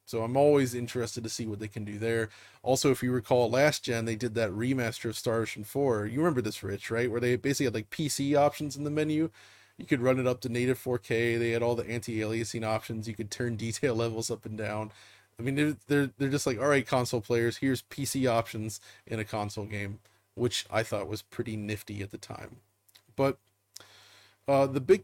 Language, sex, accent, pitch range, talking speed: English, male, American, 105-125 Hz, 220 wpm